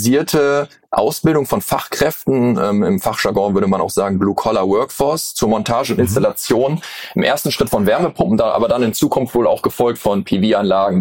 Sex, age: male, 20-39